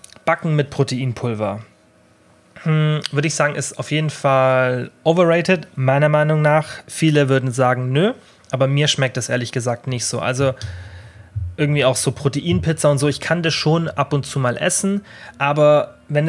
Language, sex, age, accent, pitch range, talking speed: German, male, 30-49, German, 125-150 Hz, 165 wpm